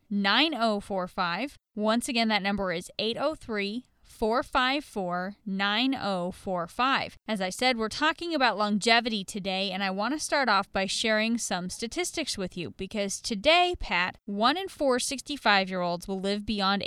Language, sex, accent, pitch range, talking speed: English, female, American, 200-260 Hz, 130 wpm